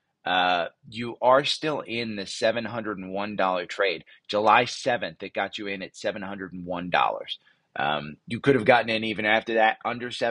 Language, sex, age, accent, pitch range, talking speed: English, male, 30-49, American, 105-125 Hz, 150 wpm